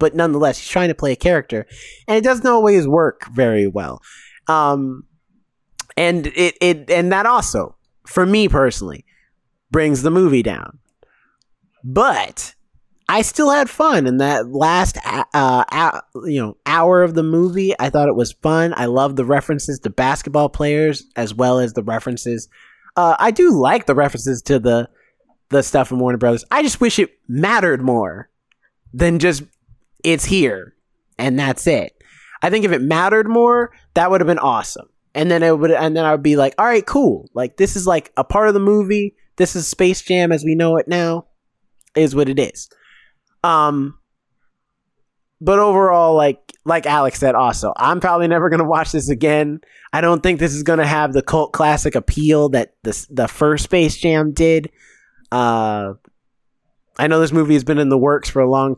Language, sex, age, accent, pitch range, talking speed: English, male, 20-39, American, 135-175 Hz, 185 wpm